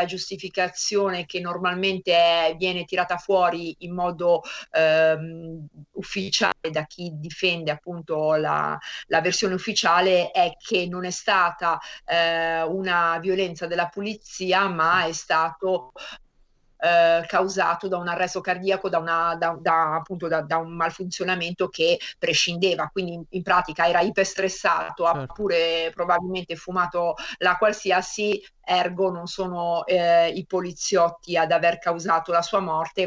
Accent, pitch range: native, 165-185 Hz